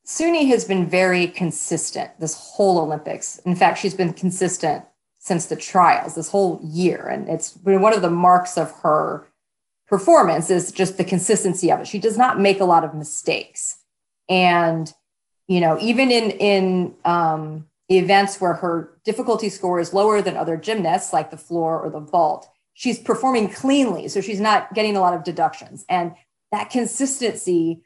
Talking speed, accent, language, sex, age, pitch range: 170 wpm, American, English, female, 30-49, 175-215 Hz